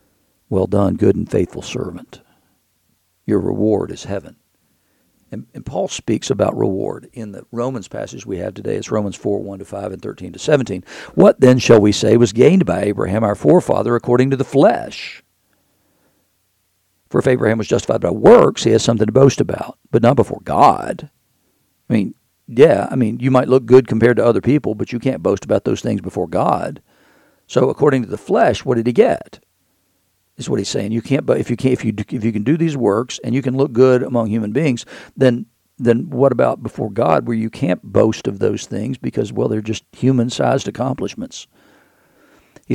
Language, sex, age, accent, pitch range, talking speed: English, male, 60-79, American, 105-130 Hz, 200 wpm